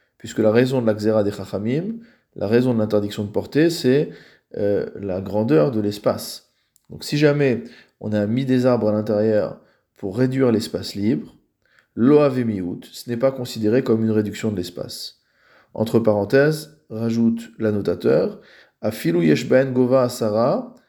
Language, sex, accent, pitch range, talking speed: French, male, French, 110-125 Hz, 145 wpm